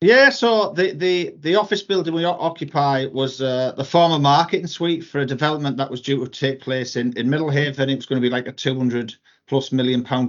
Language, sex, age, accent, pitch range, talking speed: English, male, 40-59, British, 130-160 Hz, 225 wpm